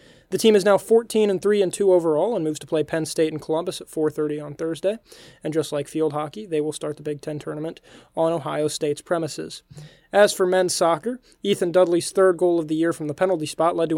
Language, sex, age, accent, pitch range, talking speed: English, male, 20-39, American, 155-190 Hz, 230 wpm